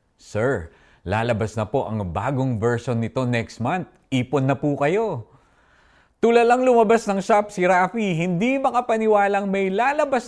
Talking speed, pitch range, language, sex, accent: 145 wpm, 110-180 Hz, Filipino, male, native